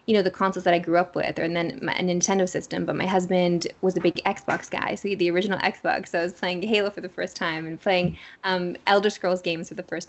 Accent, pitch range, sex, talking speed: American, 175-200 Hz, female, 285 wpm